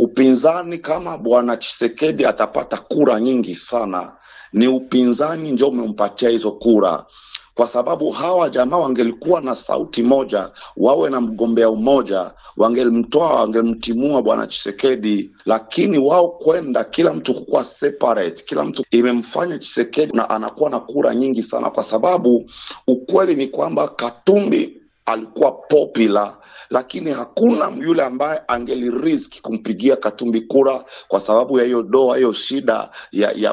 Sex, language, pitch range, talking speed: male, Swahili, 115-150 Hz, 130 wpm